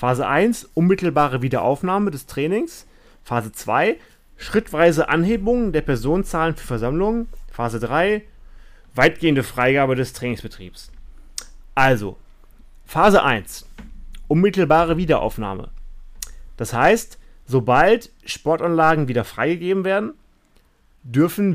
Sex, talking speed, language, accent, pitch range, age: male, 90 wpm, German, German, 125-170 Hz, 30-49